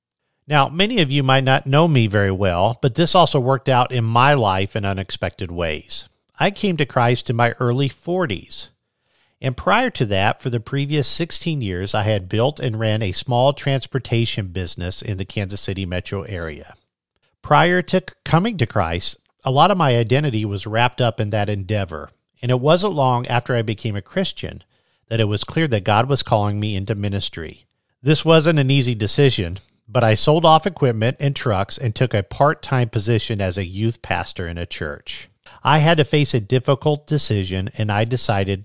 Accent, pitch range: American, 100-135 Hz